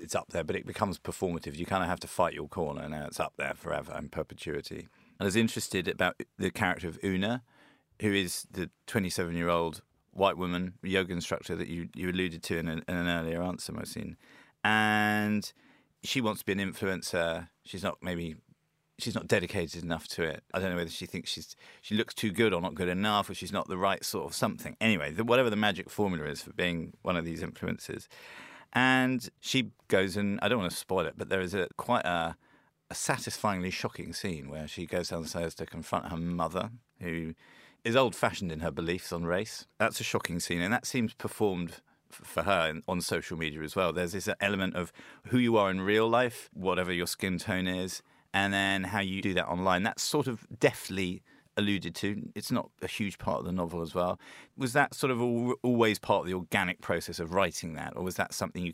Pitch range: 85-100 Hz